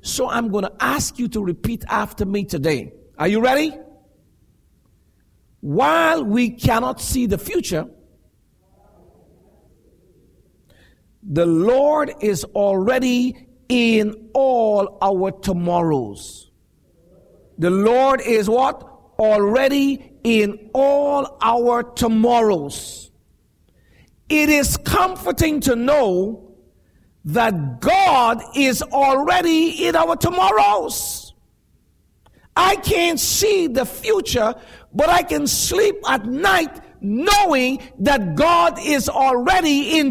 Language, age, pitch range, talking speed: English, 50-69, 185-280 Hz, 100 wpm